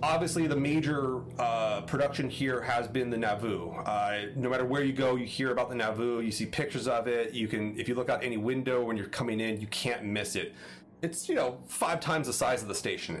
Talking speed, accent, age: 235 wpm, American, 30-49